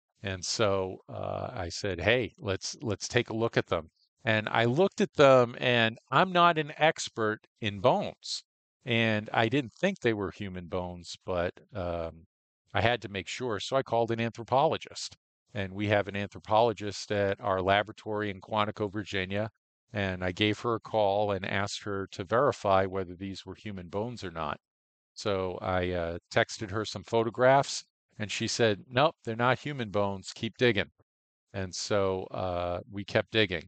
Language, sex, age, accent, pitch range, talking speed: English, male, 50-69, American, 95-115 Hz, 175 wpm